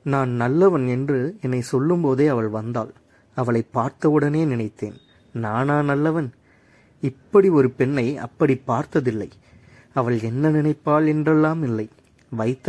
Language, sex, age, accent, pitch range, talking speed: Tamil, male, 30-49, native, 115-145 Hz, 115 wpm